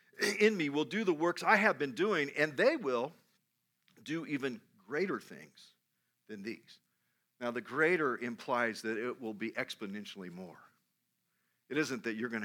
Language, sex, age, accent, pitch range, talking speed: English, male, 50-69, American, 110-180 Hz, 165 wpm